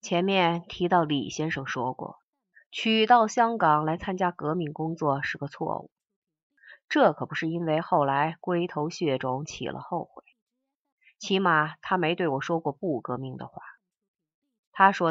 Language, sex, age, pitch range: Chinese, female, 30-49, 150-195 Hz